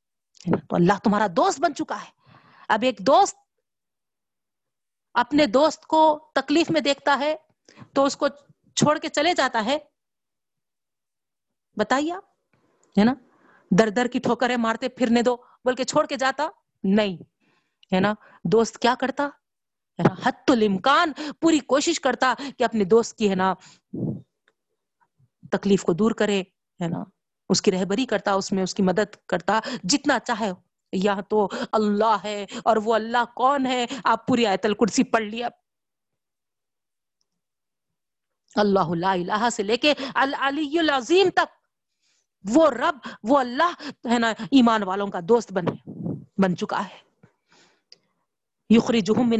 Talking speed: 135 wpm